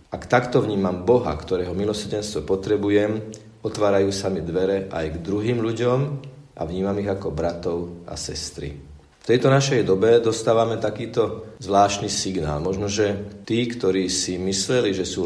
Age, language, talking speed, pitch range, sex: 50-69, Slovak, 145 wpm, 95-115 Hz, male